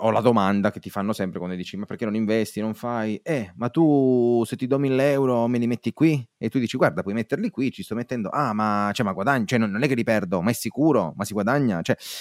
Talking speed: 275 wpm